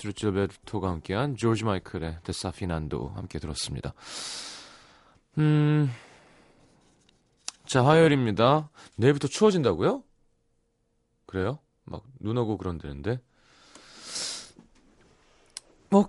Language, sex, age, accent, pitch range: Korean, male, 30-49, native, 90-140 Hz